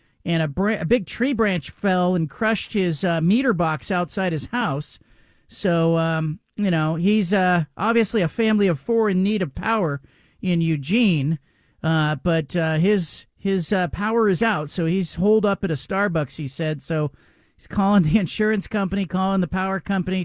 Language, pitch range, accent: English, 160-205 Hz, American